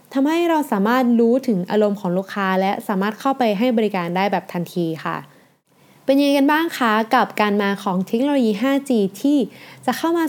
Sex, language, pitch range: female, Thai, 190-245 Hz